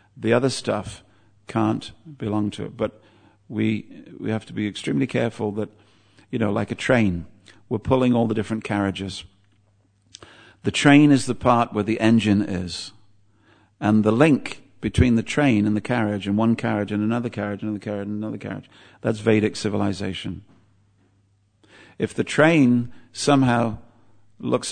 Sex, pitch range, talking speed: male, 100-115 Hz, 160 wpm